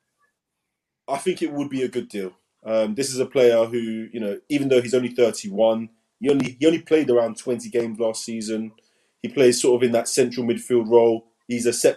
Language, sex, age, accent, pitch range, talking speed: English, male, 20-39, British, 110-135 Hz, 215 wpm